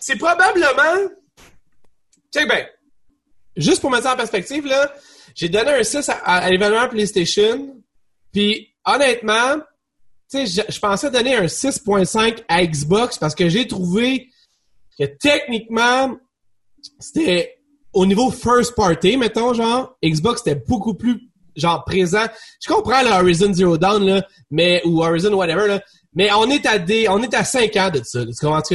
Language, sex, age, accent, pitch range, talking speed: French, male, 30-49, Canadian, 175-250 Hz, 150 wpm